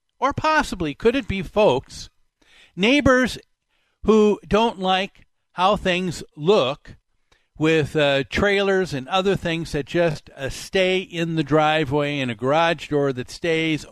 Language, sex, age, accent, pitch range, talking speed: English, male, 50-69, American, 140-190 Hz, 140 wpm